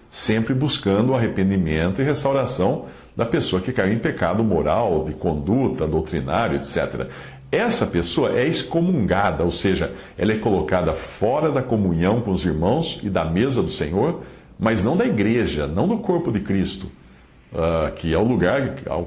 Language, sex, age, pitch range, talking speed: Portuguese, male, 60-79, 80-130 Hz, 155 wpm